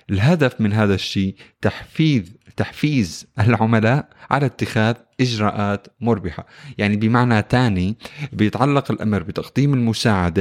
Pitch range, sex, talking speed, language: 100-125 Hz, male, 105 wpm, Arabic